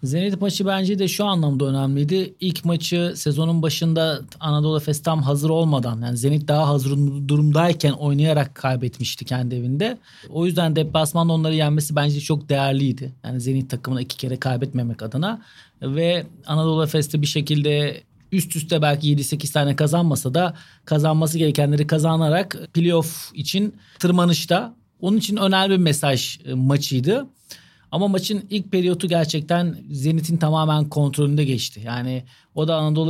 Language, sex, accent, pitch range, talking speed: Turkish, male, native, 145-175 Hz, 140 wpm